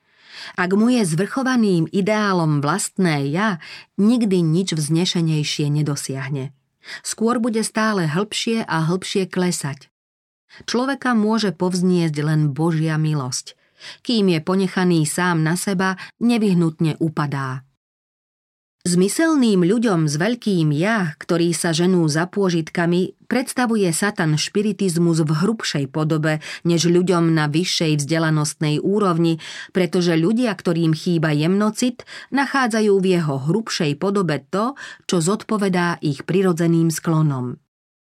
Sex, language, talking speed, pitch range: female, Slovak, 110 wpm, 160-200 Hz